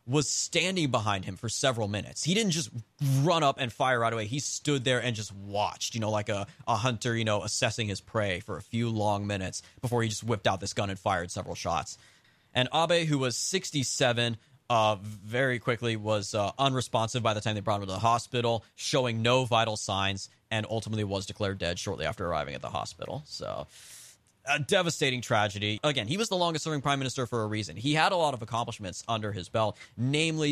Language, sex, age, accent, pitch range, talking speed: English, male, 20-39, American, 105-130 Hz, 215 wpm